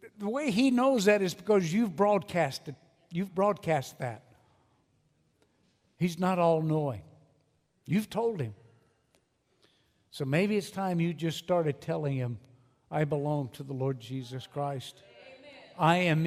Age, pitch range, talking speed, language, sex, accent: 60-79, 140-190 Hz, 135 wpm, English, male, American